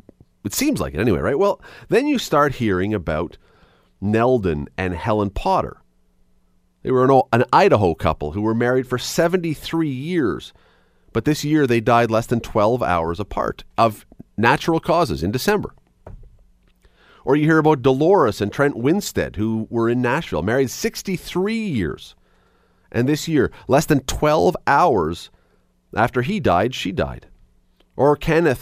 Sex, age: male, 40-59